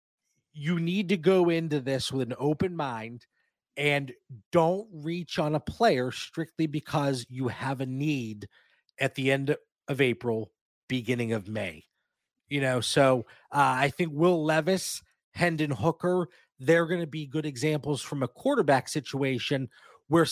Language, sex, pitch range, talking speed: English, male, 130-160 Hz, 150 wpm